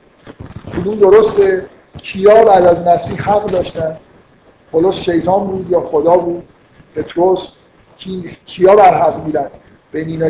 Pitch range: 155-200 Hz